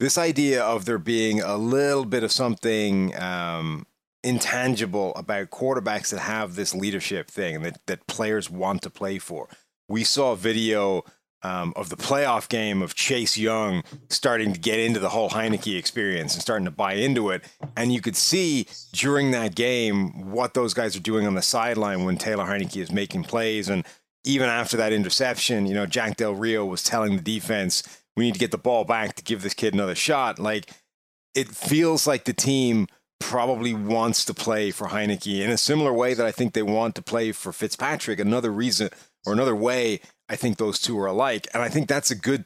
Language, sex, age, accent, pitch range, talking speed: English, male, 30-49, American, 105-125 Hz, 200 wpm